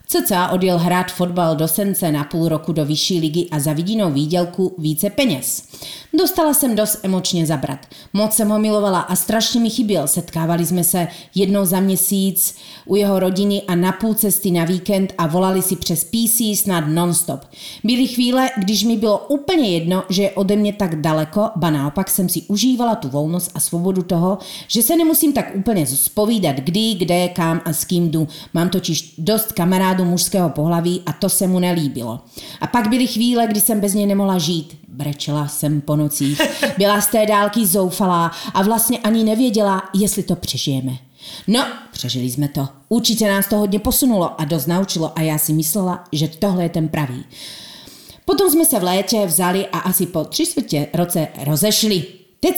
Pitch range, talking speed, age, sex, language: 165-210 Hz, 185 wpm, 30-49, female, Slovak